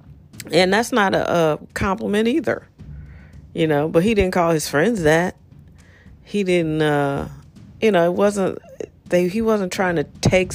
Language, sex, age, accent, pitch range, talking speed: English, female, 40-59, American, 135-180 Hz, 165 wpm